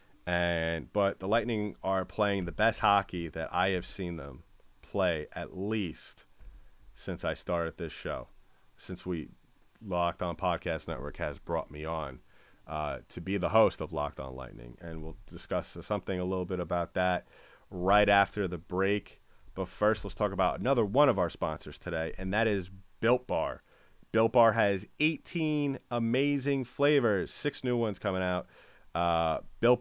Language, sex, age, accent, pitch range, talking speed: English, male, 30-49, American, 85-105 Hz, 165 wpm